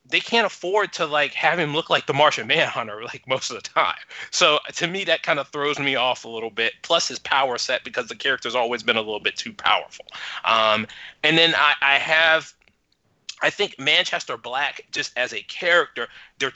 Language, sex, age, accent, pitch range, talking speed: English, male, 30-49, American, 120-160 Hz, 210 wpm